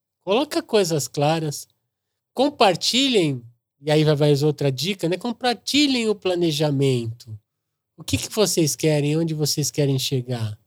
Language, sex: Portuguese, male